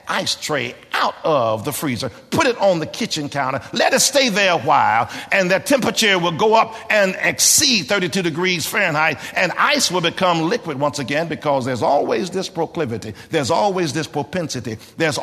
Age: 50-69